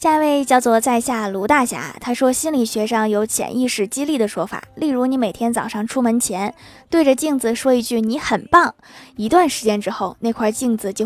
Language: Chinese